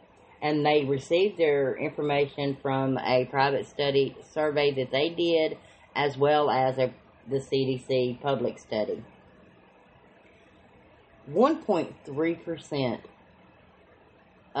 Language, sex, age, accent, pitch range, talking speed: English, female, 30-49, American, 130-150 Hz, 85 wpm